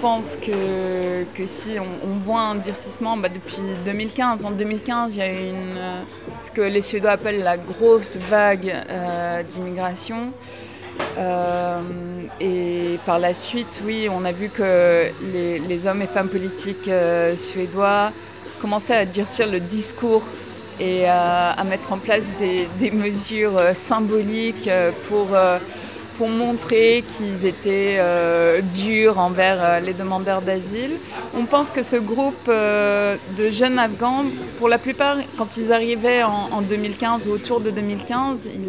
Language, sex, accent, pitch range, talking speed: French, female, French, 185-225 Hz, 150 wpm